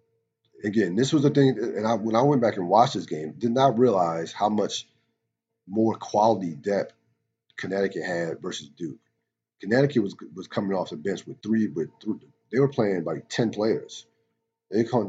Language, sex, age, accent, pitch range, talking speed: English, male, 40-59, American, 95-115 Hz, 180 wpm